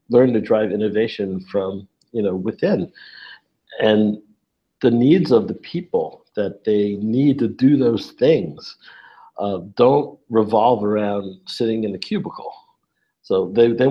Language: English